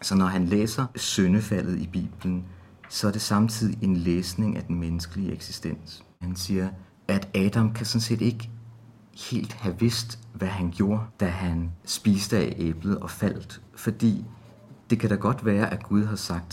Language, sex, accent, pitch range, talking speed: Danish, male, native, 90-115 Hz, 175 wpm